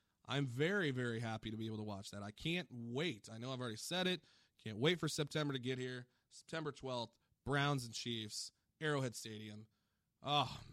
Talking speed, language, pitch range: 190 wpm, English, 115-145 Hz